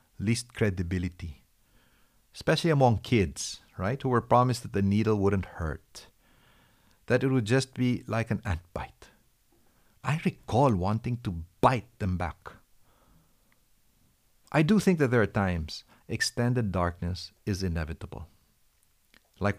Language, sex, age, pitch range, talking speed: English, male, 50-69, 90-115 Hz, 130 wpm